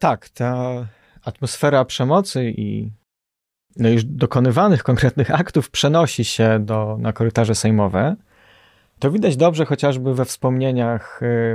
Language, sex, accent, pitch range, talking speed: Polish, male, native, 110-140 Hz, 115 wpm